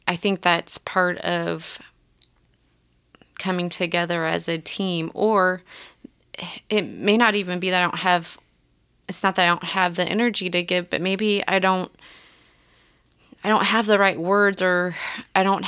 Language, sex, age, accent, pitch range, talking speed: English, female, 30-49, American, 175-195 Hz, 165 wpm